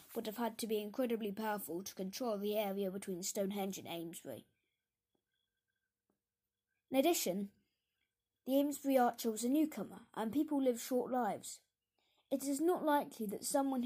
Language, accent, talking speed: English, British, 145 wpm